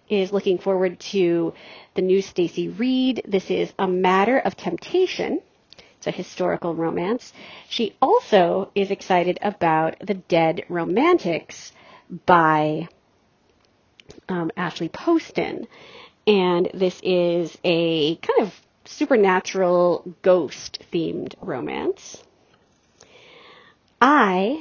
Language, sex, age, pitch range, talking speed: English, female, 40-59, 175-250 Hz, 100 wpm